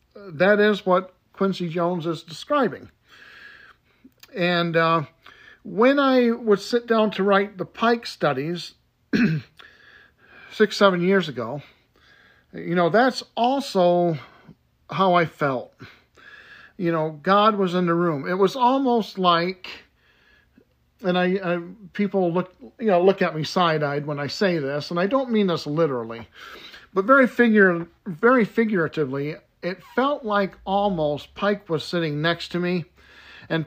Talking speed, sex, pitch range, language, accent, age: 140 wpm, male, 165-220 Hz, English, American, 50-69